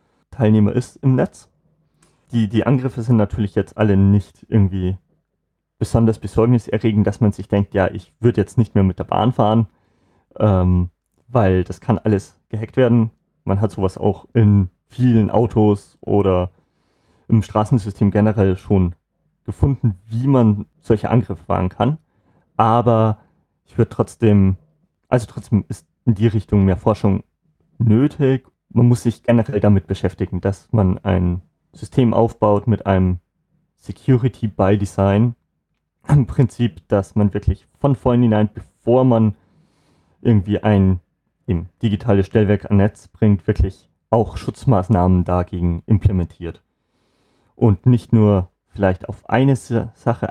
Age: 30-49